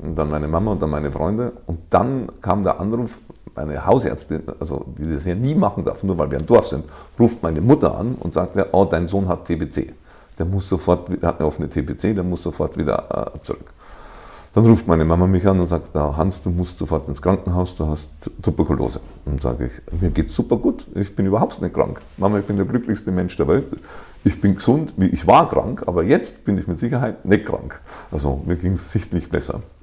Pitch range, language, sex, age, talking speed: 80-100 Hz, German, male, 50-69, 225 wpm